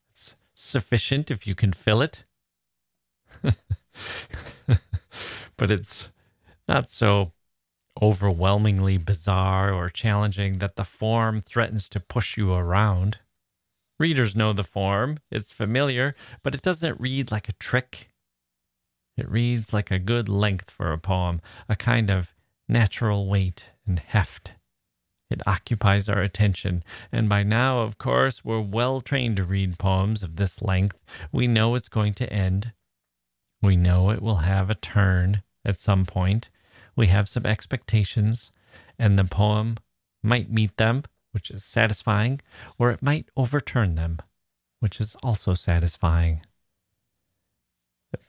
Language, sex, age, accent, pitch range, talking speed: English, male, 30-49, American, 95-115 Hz, 135 wpm